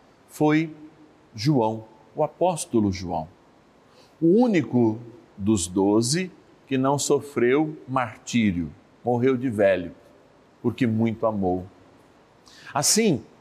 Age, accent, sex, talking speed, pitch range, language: 50-69, Brazilian, male, 90 wpm, 110-150 Hz, Portuguese